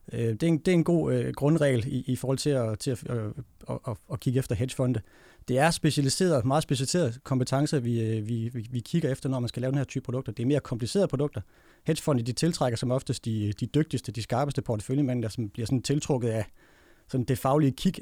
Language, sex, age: Danish, male, 30-49